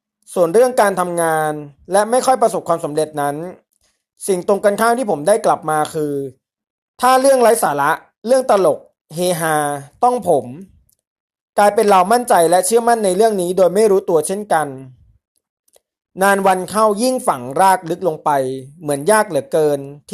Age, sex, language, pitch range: 20-39, male, Thai, 155-215 Hz